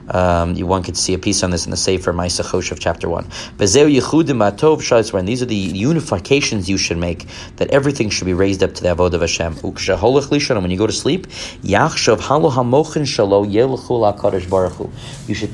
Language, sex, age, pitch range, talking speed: English, male, 30-49, 90-125 Hz, 170 wpm